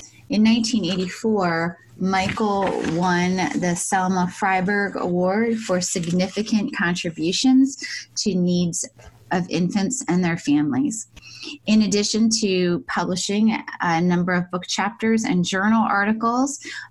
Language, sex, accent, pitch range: English, female, American, 165-200 Hz